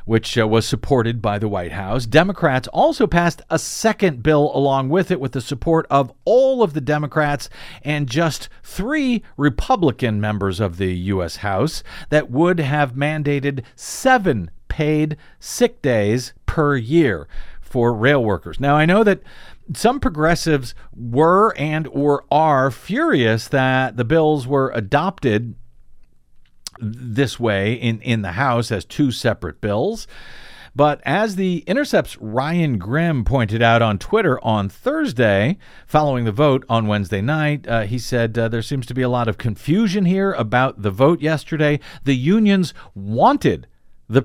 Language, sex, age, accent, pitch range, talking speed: English, male, 50-69, American, 115-160 Hz, 150 wpm